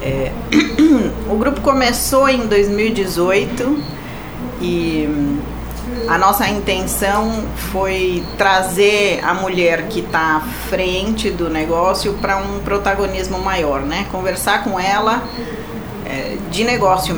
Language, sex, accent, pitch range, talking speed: Portuguese, female, Brazilian, 155-210 Hz, 100 wpm